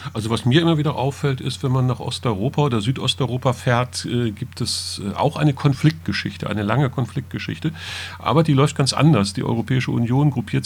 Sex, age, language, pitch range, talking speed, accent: male, 40-59, English, 105-130 Hz, 180 wpm, German